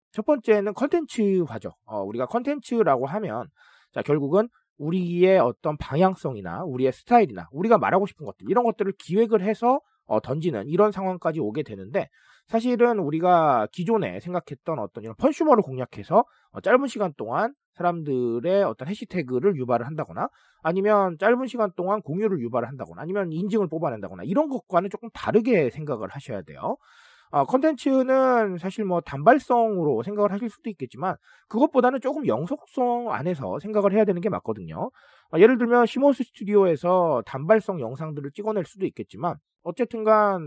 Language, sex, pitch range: Korean, male, 160-230 Hz